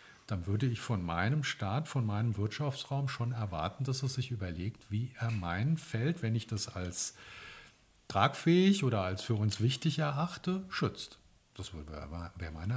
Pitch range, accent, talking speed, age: 105-140 Hz, German, 160 wpm, 50-69